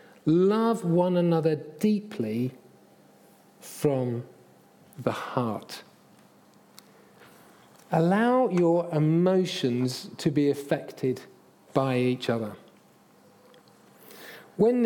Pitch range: 135-185 Hz